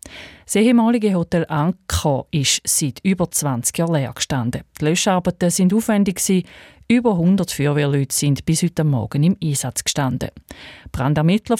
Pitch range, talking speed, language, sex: 140-190 Hz, 135 wpm, German, female